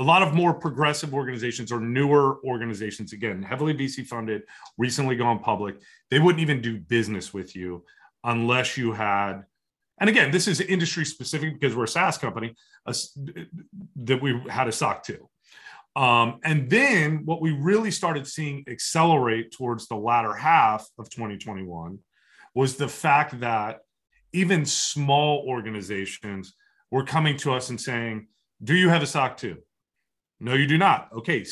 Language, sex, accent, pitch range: English, male, American, 115-150 Hz